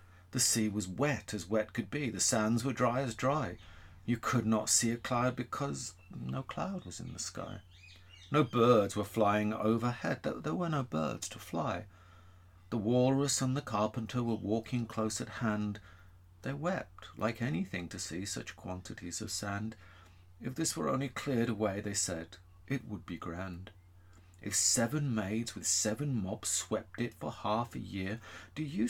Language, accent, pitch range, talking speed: English, British, 90-120 Hz, 175 wpm